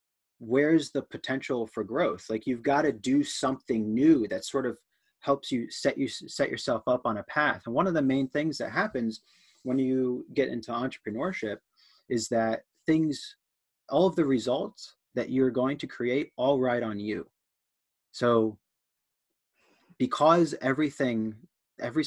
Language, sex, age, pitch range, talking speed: English, male, 30-49, 115-140 Hz, 160 wpm